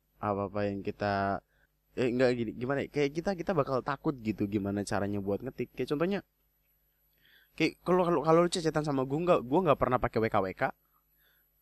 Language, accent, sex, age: Indonesian, native, male, 20-39